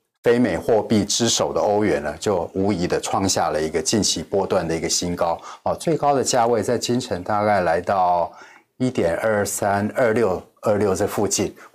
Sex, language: male, Chinese